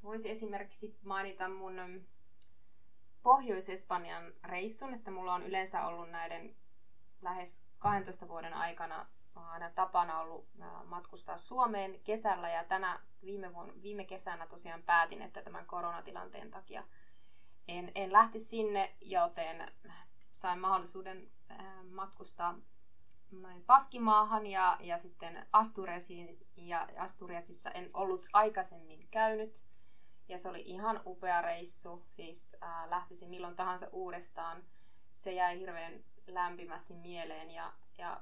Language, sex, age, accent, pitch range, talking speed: Finnish, female, 20-39, native, 165-195 Hz, 110 wpm